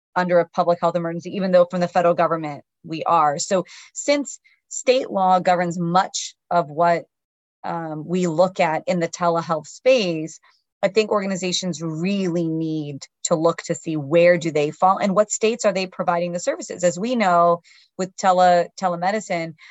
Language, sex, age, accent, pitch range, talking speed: English, female, 30-49, American, 160-190 Hz, 170 wpm